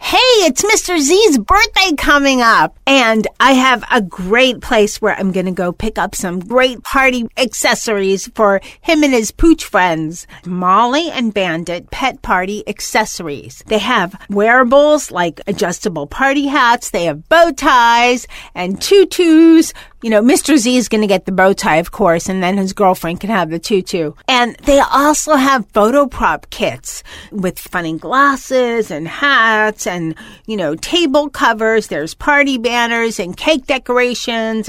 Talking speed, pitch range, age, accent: 165 wpm, 190-270 Hz, 40-59, American